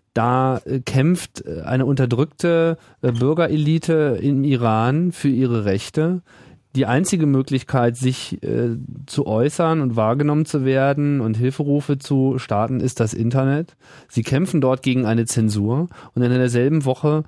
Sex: male